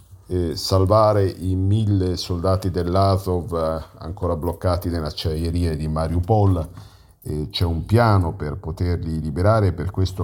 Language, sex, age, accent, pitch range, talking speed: Italian, male, 50-69, native, 85-100 Hz, 110 wpm